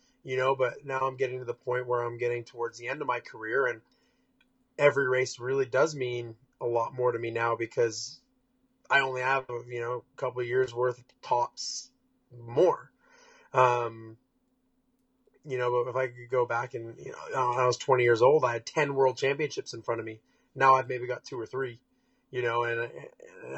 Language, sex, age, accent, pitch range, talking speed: English, male, 30-49, American, 120-150 Hz, 205 wpm